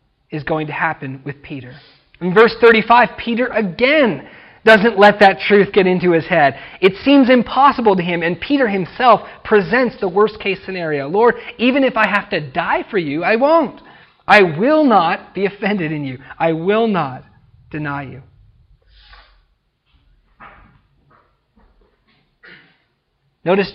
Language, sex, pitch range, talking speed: English, male, 155-210 Hz, 140 wpm